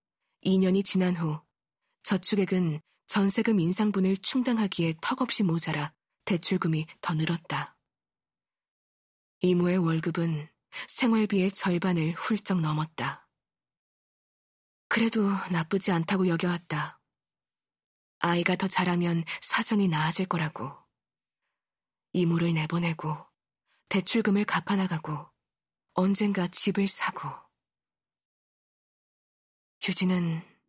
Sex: female